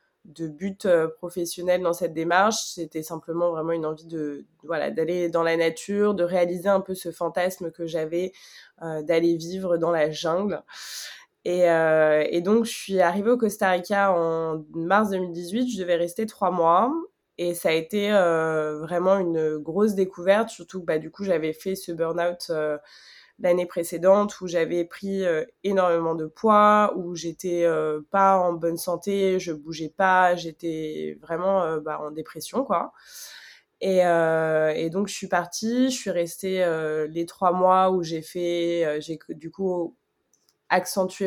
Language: French